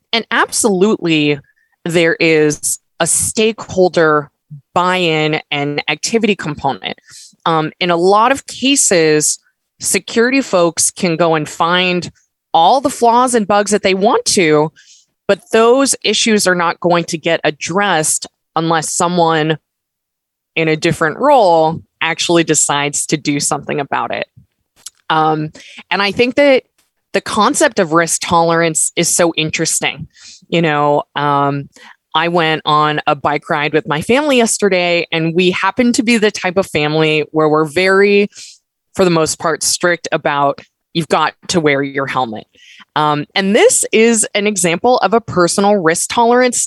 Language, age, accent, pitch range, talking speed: English, 20-39, American, 155-215 Hz, 150 wpm